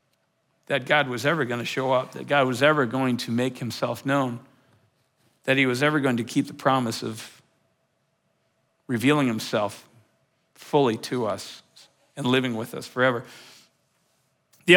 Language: English